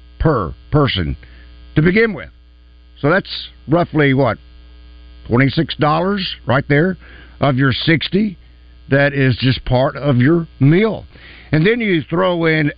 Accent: American